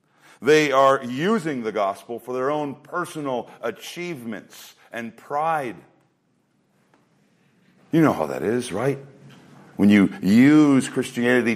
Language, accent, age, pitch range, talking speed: English, American, 50-69, 120-150 Hz, 115 wpm